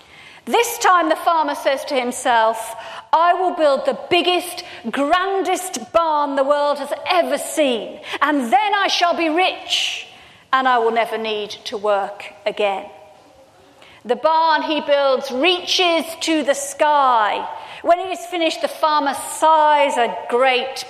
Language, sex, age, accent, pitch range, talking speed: English, female, 40-59, British, 245-325 Hz, 145 wpm